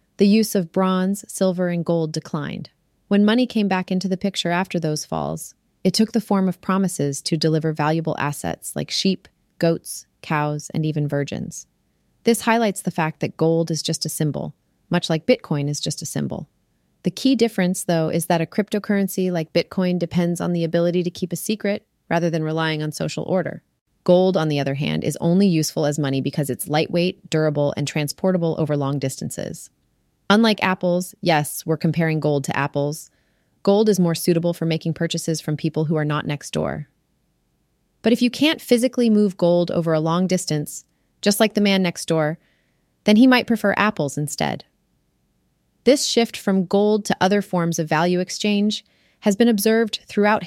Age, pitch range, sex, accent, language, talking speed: 30-49, 155-205 Hz, female, American, English, 185 wpm